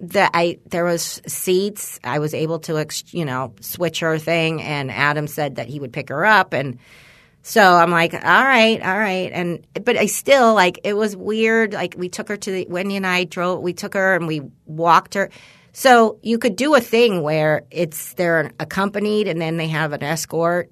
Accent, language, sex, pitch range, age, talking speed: American, English, female, 155-200 Hz, 40-59, 210 wpm